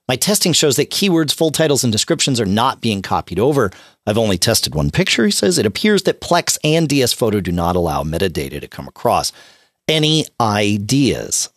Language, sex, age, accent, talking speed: English, male, 40-59, American, 190 wpm